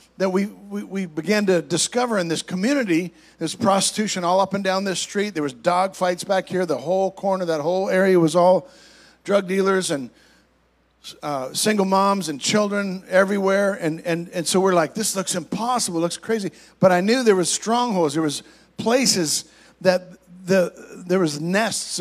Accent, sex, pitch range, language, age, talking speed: American, male, 175-200 Hz, English, 50-69, 185 wpm